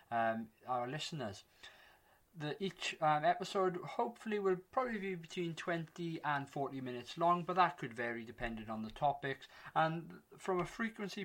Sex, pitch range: male, 125-165 Hz